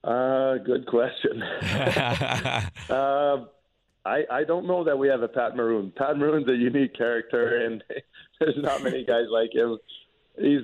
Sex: male